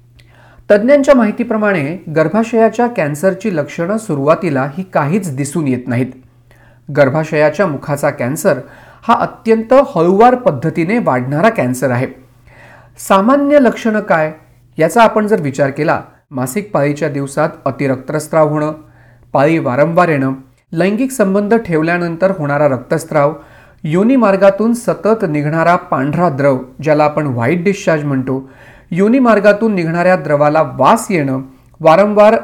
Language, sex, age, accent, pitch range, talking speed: Marathi, male, 40-59, native, 140-210 Hz, 105 wpm